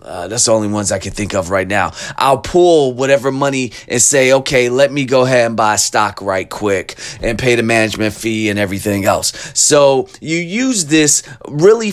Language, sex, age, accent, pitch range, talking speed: English, male, 30-49, American, 125-165 Hz, 200 wpm